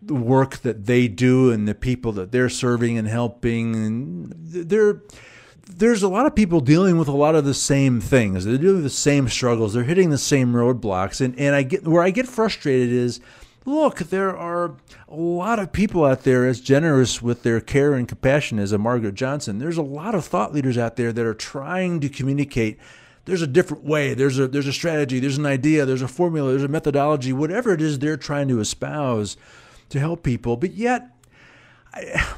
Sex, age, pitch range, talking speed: male, 50-69, 125-170 Hz, 205 wpm